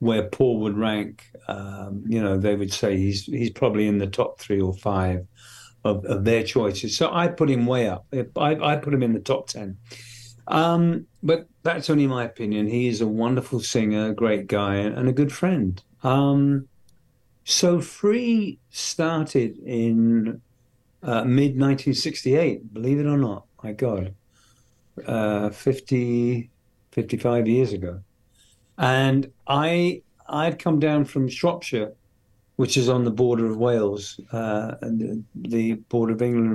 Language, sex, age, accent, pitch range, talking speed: English, male, 50-69, British, 110-135 Hz, 160 wpm